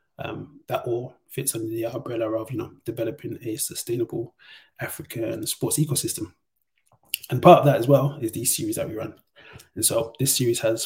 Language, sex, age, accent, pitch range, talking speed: English, male, 20-39, British, 120-155 Hz, 180 wpm